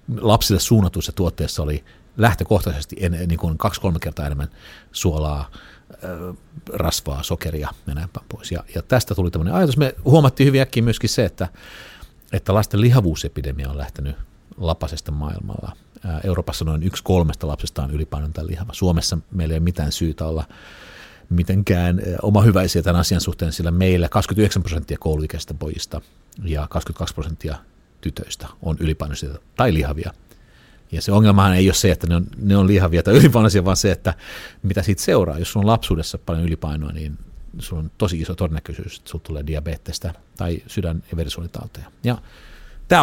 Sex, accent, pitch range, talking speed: male, native, 80-100 Hz, 155 wpm